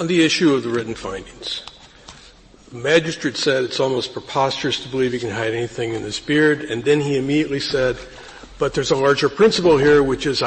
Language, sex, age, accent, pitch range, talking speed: English, male, 50-69, American, 130-155 Hz, 200 wpm